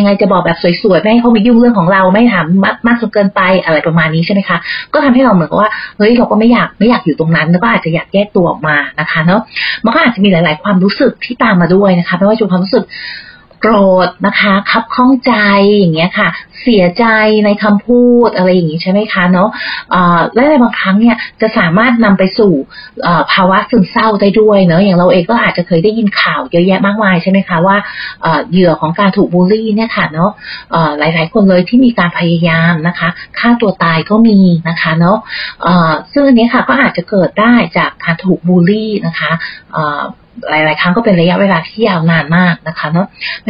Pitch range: 175-225 Hz